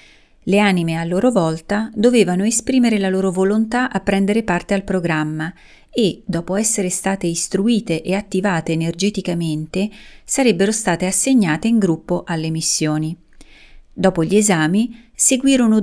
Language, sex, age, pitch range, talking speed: Italian, female, 30-49, 175-230 Hz, 130 wpm